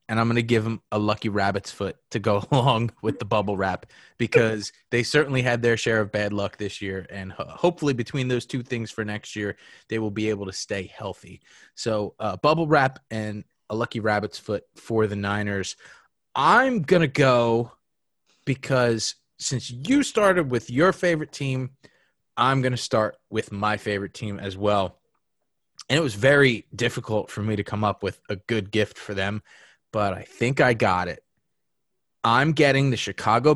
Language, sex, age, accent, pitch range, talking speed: English, male, 20-39, American, 105-150 Hz, 185 wpm